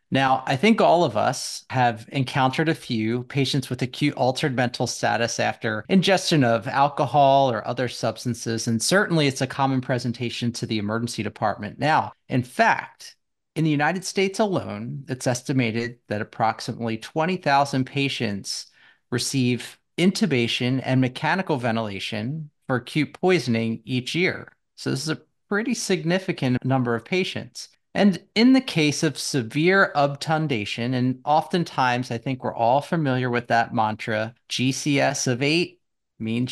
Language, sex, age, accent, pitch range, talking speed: English, male, 30-49, American, 115-155 Hz, 145 wpm